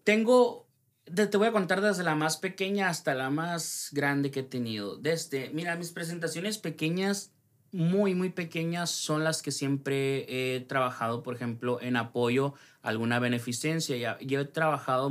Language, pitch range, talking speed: Spanish, 120-150 Hz, 165 wpm